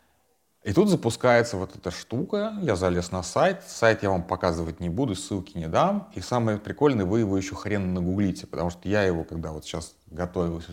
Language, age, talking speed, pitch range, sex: Russian, 30-49, 195 wpm, 90-110 Hz, male